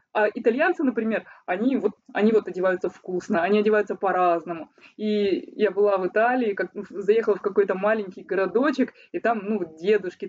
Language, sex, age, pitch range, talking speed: Russian, female, 20-39, 200-260 Hz, 150 wpm